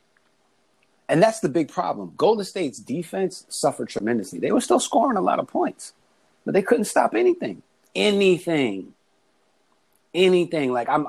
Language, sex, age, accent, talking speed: English, male, 30-49, American, 145 wpm